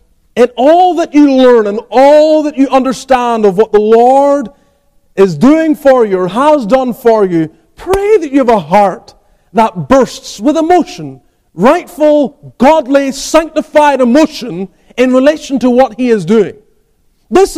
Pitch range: 205-295 Hz